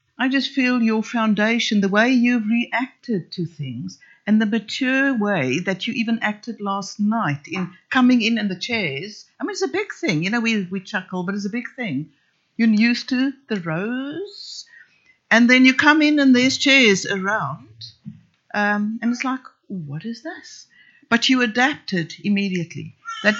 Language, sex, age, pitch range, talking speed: English, female, 60-79, 185-245 Hz, 175 wpm